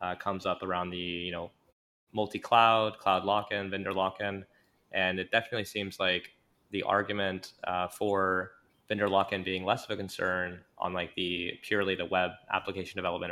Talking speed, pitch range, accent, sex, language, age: 180 wpm, 90-100 Hz, American, male, English, 20-39